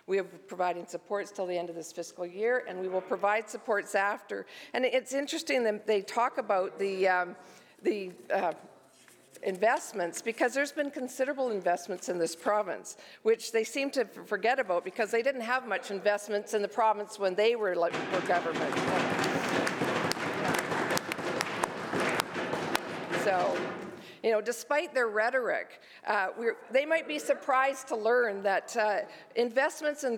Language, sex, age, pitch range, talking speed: English, female, 50-69, 205-265 Hz, 145 wpm